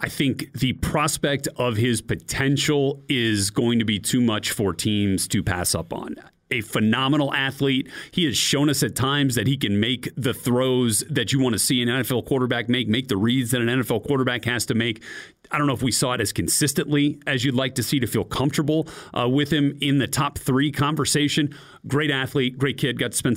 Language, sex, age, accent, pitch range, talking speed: English, male, 40-59, American, 110-140 Hz, 220 wpm